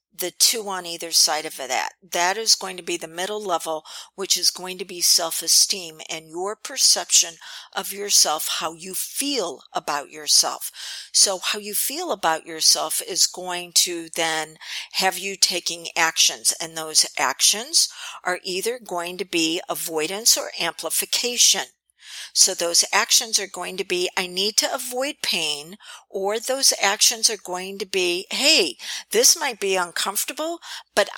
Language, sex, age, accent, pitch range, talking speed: English, female, 50-69, American, 175-245 Hz, 155 wpm